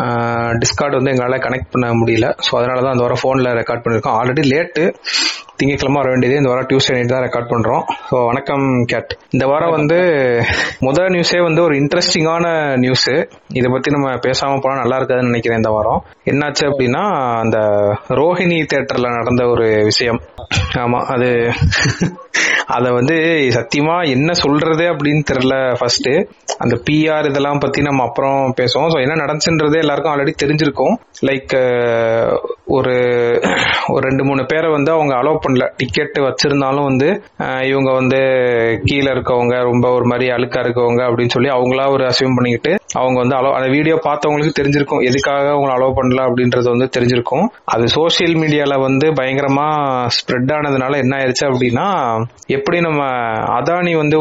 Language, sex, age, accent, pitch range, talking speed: Tamil, male, 30-49, native, 125-145 Hz, 130 wpm